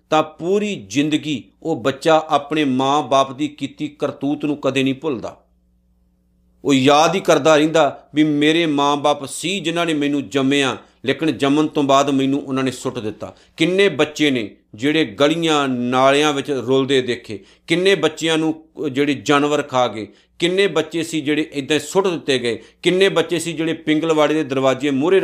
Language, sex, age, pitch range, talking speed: Punjabi, male, 50-69, 140-195 Hz, 165 wpm